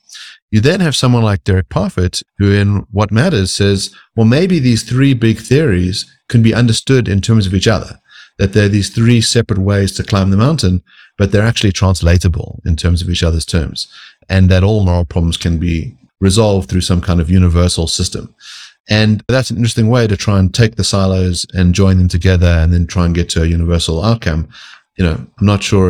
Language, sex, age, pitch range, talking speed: English, male, 30-49, 85-110 Hz, 205 wpm